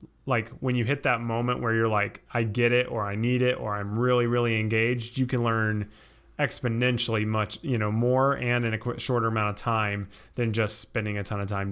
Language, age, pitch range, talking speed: English, 20-39, 110-130 Hz, 220 wpm